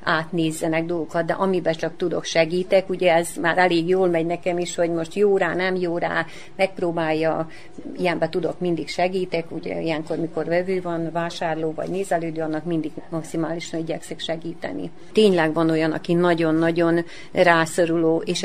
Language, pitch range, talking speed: Hungarian, 160-180 Hz, 155 wpm